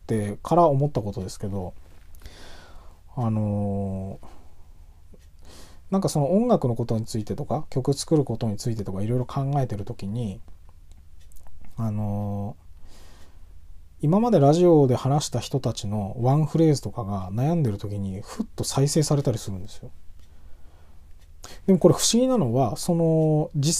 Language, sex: Japanese, male